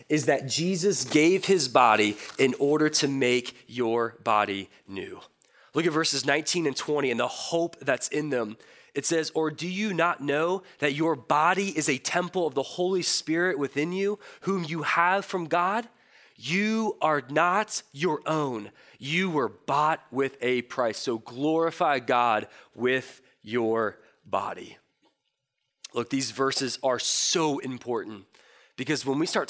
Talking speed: 155 wpm